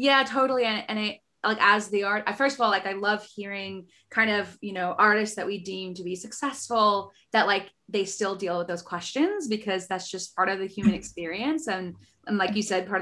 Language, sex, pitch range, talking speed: English, female, 195-235 Hz, 230 wpm